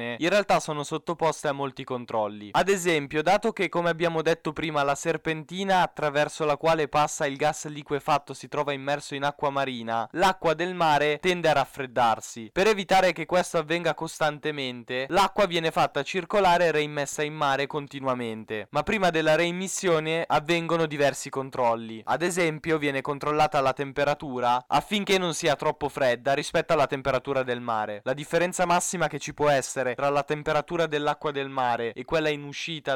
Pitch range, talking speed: 140-170 Hz, 165 wpm